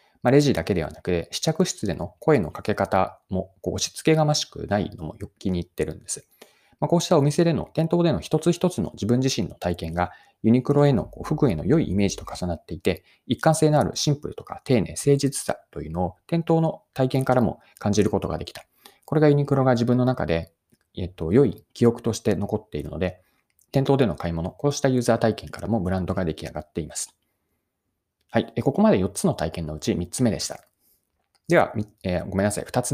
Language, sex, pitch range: Japanese, male, 90-145 Hz